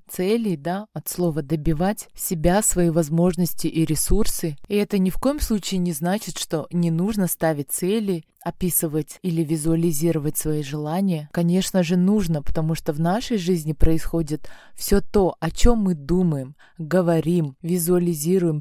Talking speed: 145 wpm